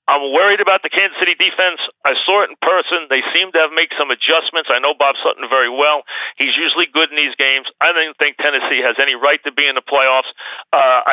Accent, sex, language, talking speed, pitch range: American, male, English, 235 wpm, 130-155 Hz